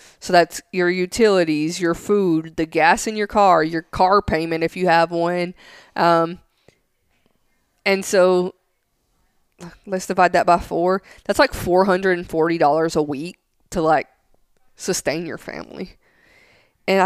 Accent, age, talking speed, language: American, 20-39, 130 wpm, English